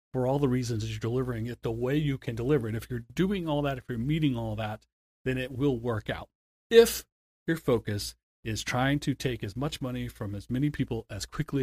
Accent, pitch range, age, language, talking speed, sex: American, 105-130 Hz, 30-49, English, 235 wpm, male